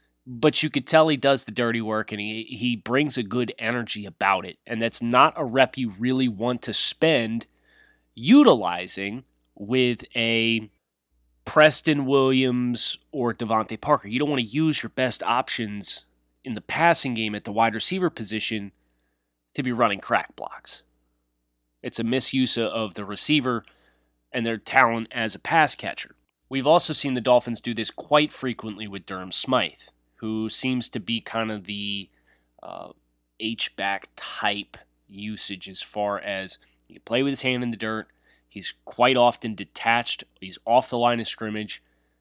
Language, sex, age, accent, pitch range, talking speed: English, male, 30-49, American, 100-130 Hz, 165 wpm